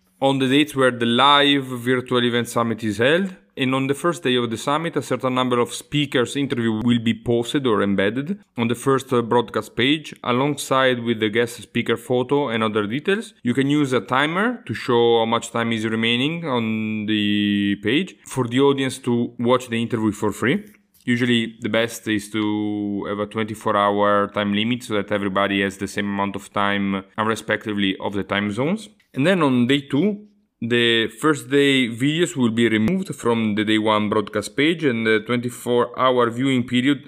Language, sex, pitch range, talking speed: English, male, 110-140 Hz, 190 wpm